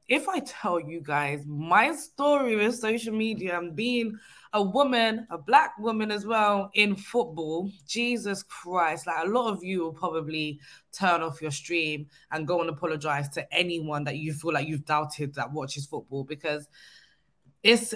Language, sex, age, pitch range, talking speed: English, female, 20-39, 150-200 Hz, 170 wpm